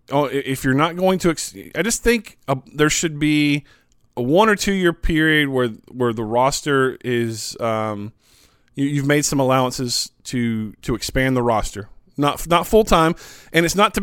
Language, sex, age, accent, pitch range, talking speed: English, male, 20-39, American, 130-165 Hz, 190 wpm